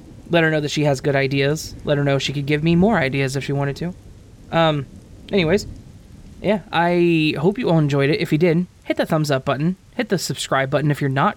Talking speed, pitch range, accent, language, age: 240 wpm, 135-165 Hz, American, English, 20-39